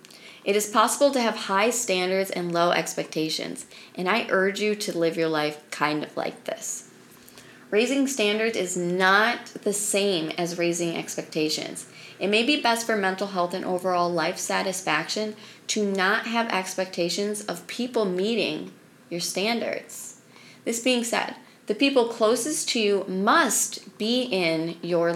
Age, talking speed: 30-49, 150 wpm